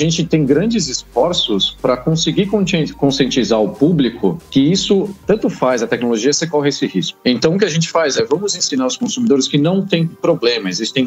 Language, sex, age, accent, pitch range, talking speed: Portuguese, male, 40-59, Brazilian, 125-170 Hz, 195 wpm